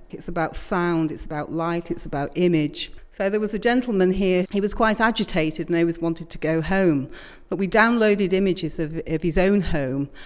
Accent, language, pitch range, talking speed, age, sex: British, English, 170-210 Hz, 200 wpm, 40-59, female